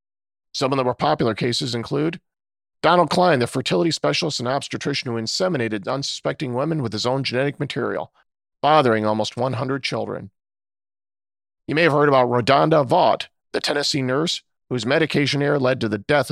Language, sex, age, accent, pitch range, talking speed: English, male, 40-59, American, 115-155 Hz, 160 wpm